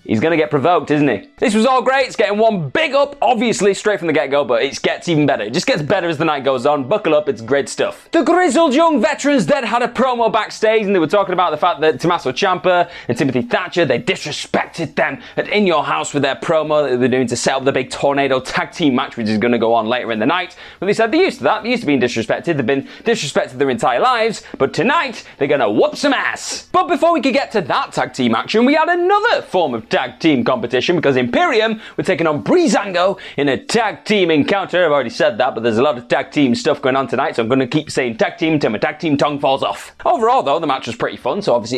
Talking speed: 270 wpm